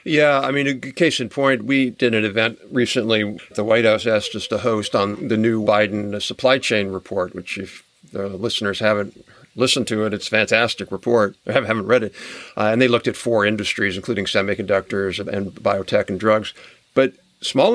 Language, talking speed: English, 190 wpm